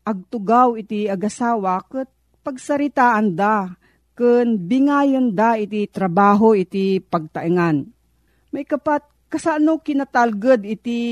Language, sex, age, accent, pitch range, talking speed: Filipino, female, 40-59, native, 190-245 Hz, 95 wpm